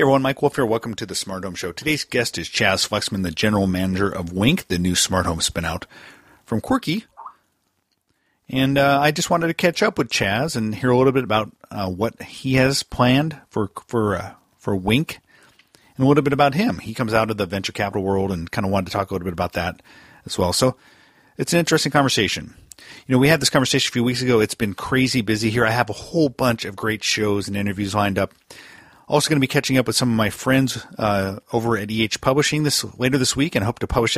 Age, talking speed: 40-59, 240 wpm